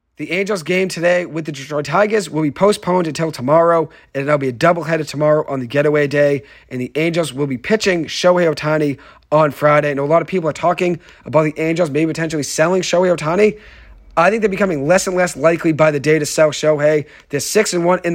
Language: English